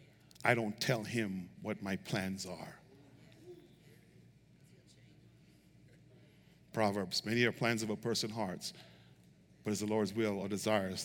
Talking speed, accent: 125 wpm, American